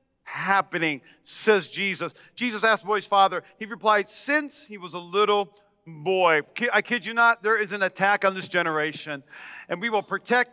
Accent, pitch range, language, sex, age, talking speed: American, 185-245 Hz, English, male, 40-59, 175 wpm